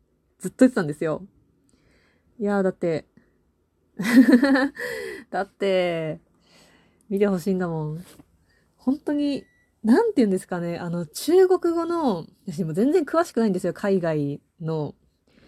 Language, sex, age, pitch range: Japanese, female, 20-39, 155-210 Hz